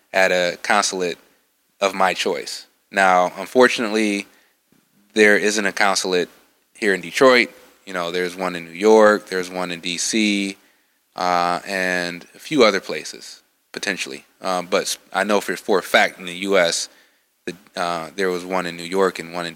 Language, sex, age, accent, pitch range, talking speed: English, male, 20-39, American, 90-105 Hz, 165 wpm